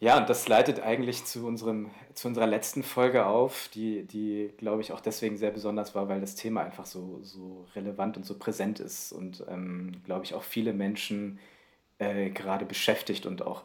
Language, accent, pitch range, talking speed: German, German, 95-110 Hz, 195 wpm